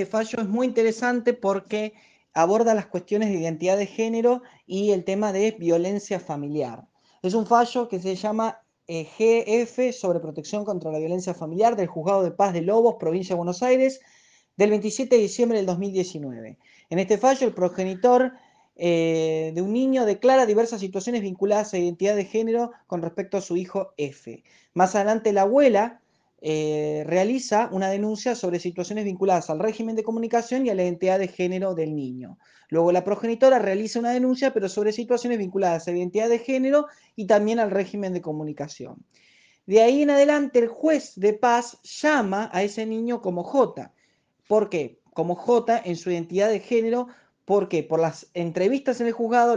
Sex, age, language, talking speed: male, 20-39, Spanish, 175 wpm